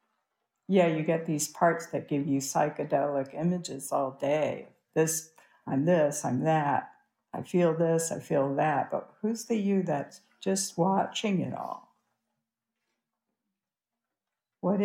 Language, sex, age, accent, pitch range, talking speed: English, female, 60-79, American, 135-180 Hz, 135 wpm